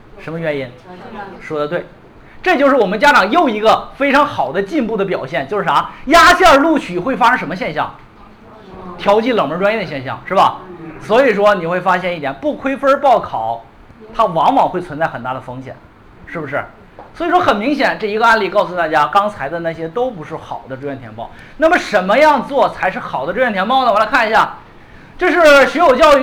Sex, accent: male, native